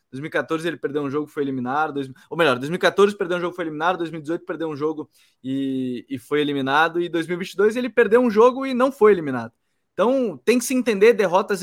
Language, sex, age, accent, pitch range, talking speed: Portuguese, male, 20-39, Brazilian, 135-200 Hz, 205 wpm